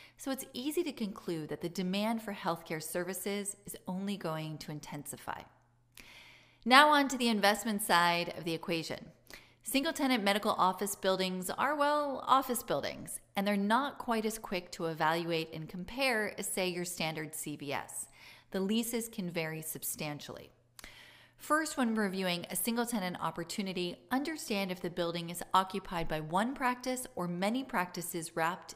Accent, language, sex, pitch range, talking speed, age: American, English, female, 170-230 Hz, 155 wpm, 30-49